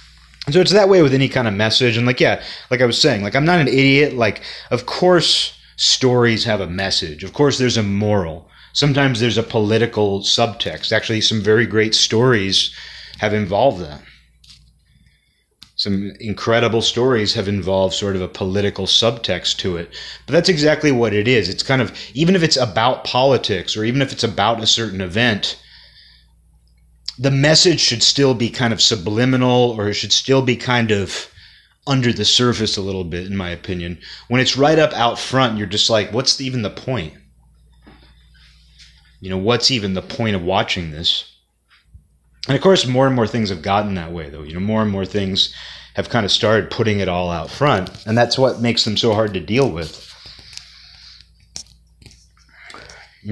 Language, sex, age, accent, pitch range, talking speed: English, male, 30-49, American, 90-125 Hz, 185 wpm